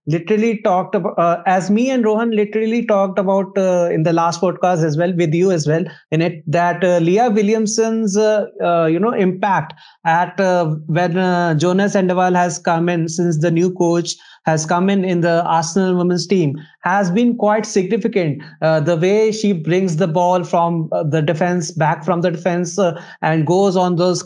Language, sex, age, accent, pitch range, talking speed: English, male, 20-39, Indian, 170-210 Hz, 190 wpm